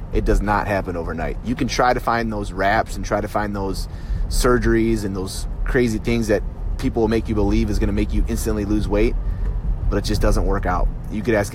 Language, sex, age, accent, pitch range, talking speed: English, male, 30-49, American, 85-115 Hz, 235 wpm